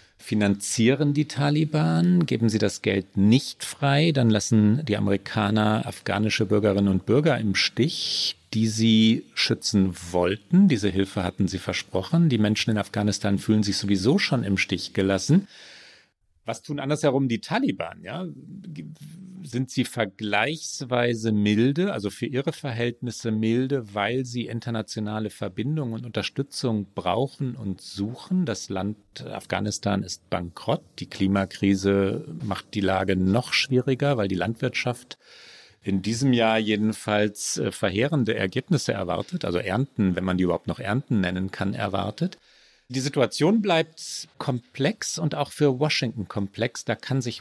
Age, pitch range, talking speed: 40-59, 100-135 Hz, 135 wpm